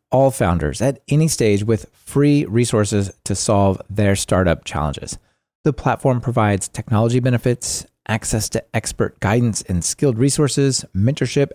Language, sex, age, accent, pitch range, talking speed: English, male, 30-49, American, 100-130 Hz, 135 wpm